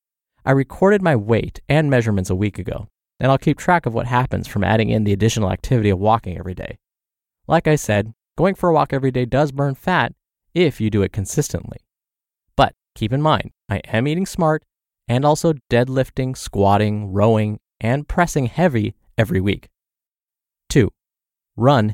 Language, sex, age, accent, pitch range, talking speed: English, male, 20-39, American, 105-145 Hz, 170 wpm